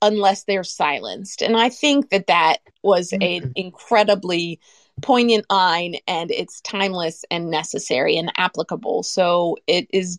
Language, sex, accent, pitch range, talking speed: English, female, American, 180-230 Hz, 135 wpm